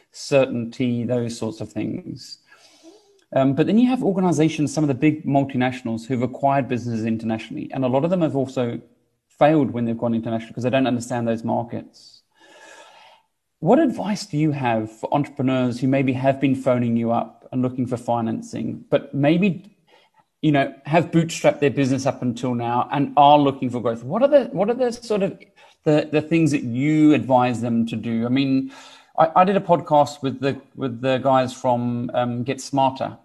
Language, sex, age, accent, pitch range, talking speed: English, male, 30-49, British, 120-145 Hz, 190 wpm